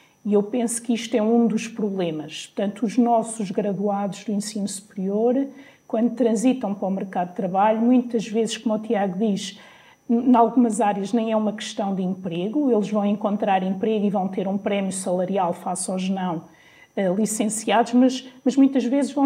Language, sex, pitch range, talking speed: Portuguese, female, 205-255 Hz, 180 wpm